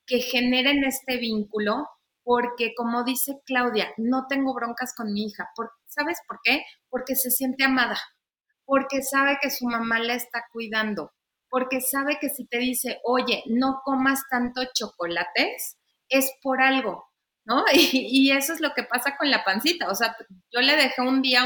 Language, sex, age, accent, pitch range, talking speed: Spanish, female, 30-49, Mexican, 225-270 Hz, 170 wpm